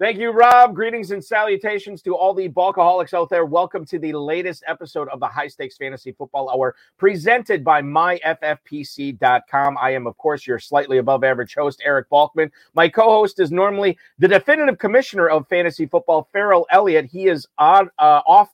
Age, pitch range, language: 40-59, 125-170 Hz, English